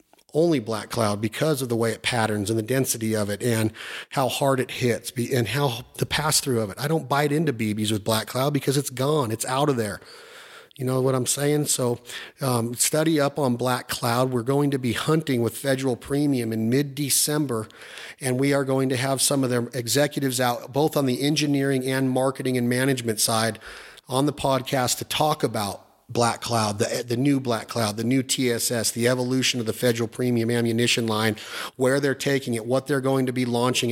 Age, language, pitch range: 40-59, English, 120-140 Hz